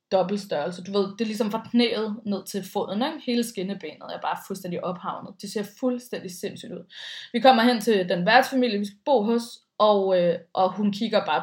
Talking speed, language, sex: 205 wpm, Danish, female